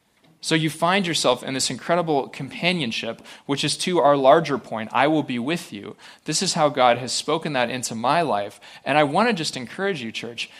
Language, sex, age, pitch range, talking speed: English, male, 30-49, 120-150 Hz, 210 wpm